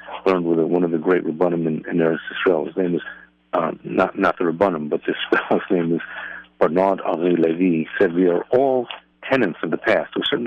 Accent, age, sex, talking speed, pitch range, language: American, 60-79, male, 200 wpm, 80-100 Hz, English